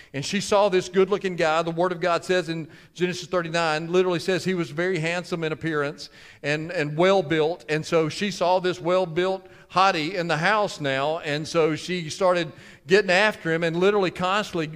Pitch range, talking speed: 175-225 Hz, 185 wpm